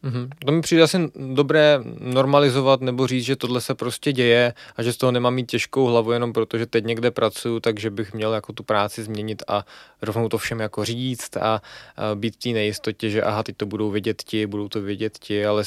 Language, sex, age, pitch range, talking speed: Czech, male, 20-39, 110-130 Hz, 220 wpm